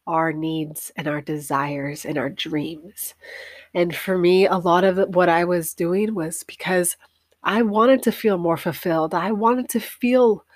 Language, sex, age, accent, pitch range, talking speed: English, female, 30-49, American, 160-195 Hz, 170 wpm